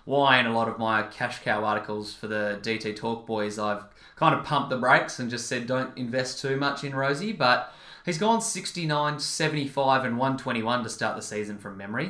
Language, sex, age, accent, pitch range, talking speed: English, male, 20-39, Australian, 115-145 Hz, 200 wpm